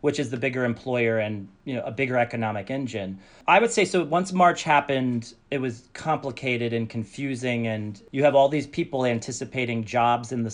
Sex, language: male, English